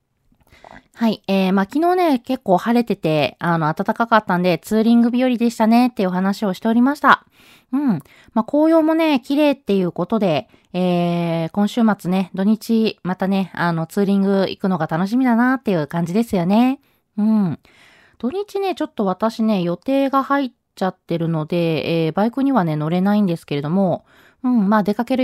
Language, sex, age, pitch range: Japanese, female, 20-39, 180-255 Hz